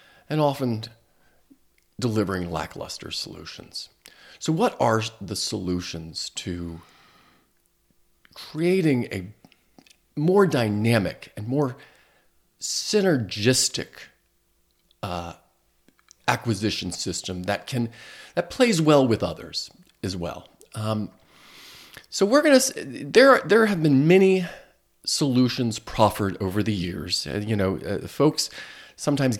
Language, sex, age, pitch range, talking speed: English, male, 40-59, 95-150 Hz, 100 wpm